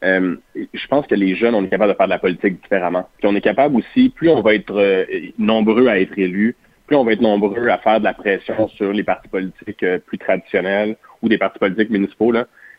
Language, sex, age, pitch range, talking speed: French, male, 30-49, 100-115 Hz, 240 wpm